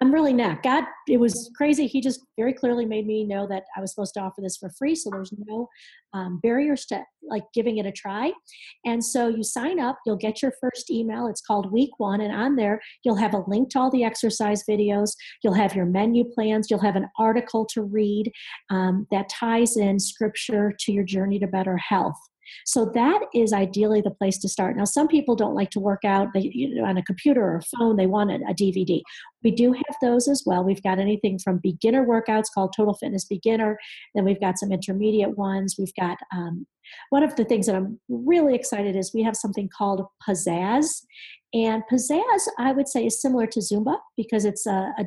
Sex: female